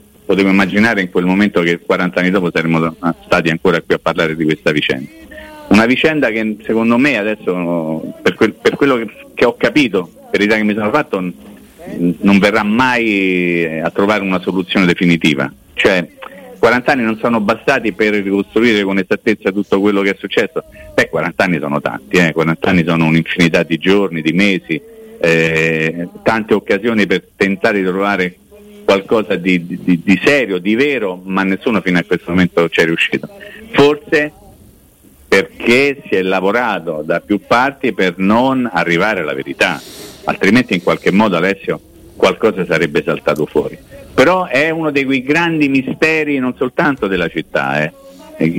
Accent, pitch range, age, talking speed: native, 90-130 Hz, 40-59, 160 wpm